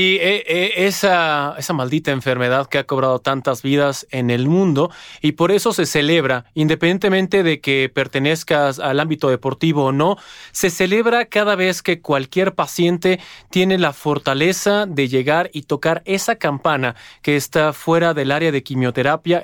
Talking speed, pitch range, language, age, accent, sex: 155 wpm, 145-185 Hz, Spanish, 30-49, Mexican, male